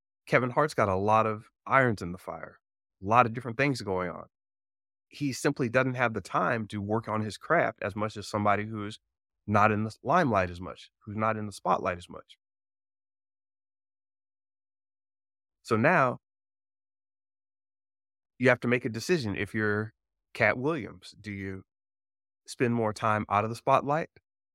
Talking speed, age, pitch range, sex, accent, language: 165 wpm, 30-49, 100-110 Hz, male, American, English